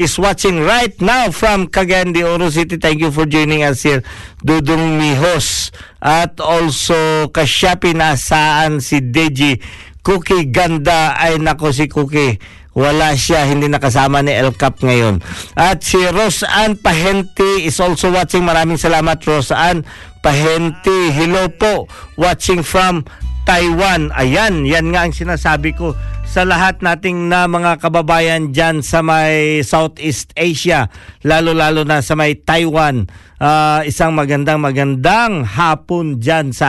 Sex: male